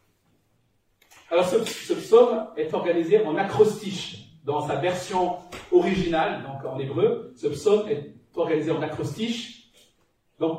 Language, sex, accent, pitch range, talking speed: French, male, French, 160-230 Hz, 120 wpm